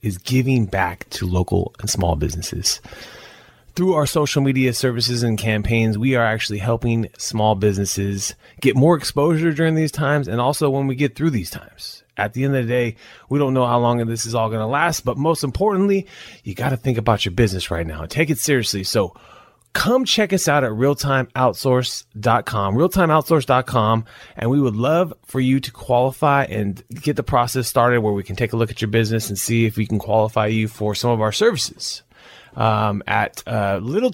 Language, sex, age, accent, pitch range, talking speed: English, male, 30-49, American, 105-135 Hz, 200 wpm